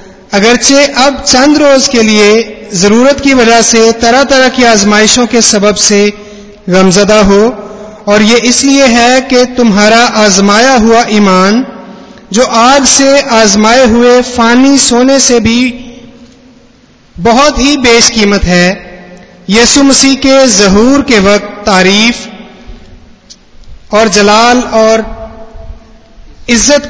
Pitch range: 205-250 Hz